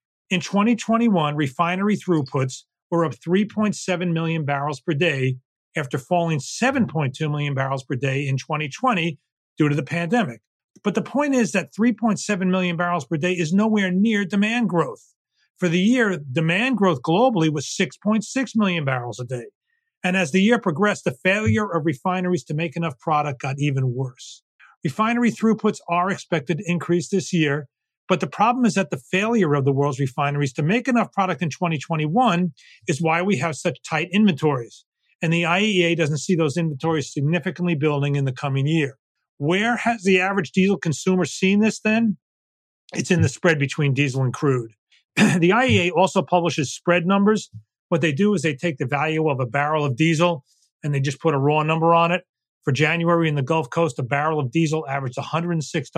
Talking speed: 180 wpm